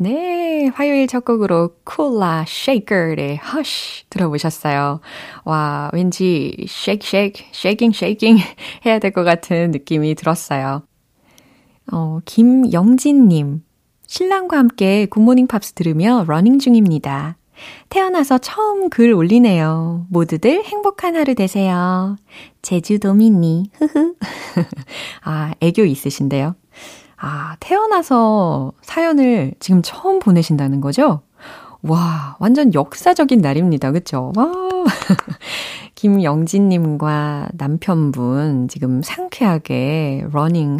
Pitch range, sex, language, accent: 155-245 Hz, female, Korean, native